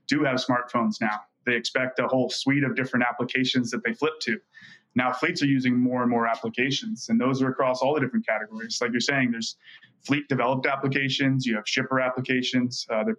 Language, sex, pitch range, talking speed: English, male, 120-135 Hz, 195 wpm